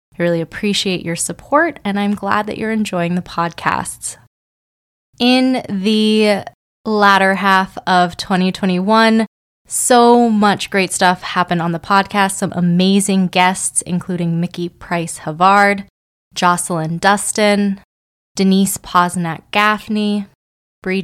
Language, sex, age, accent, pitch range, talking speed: English, female, 20-39, American, 175-210 Hz, 110 wpm